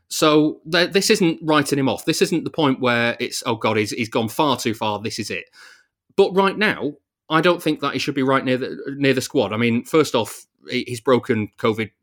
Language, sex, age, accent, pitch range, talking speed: English, male, 30-49, British, 110-145 Hz, 225 wpm